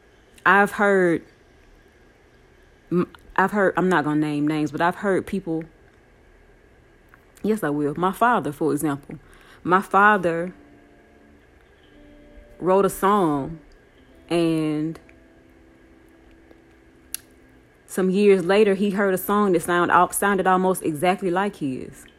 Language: English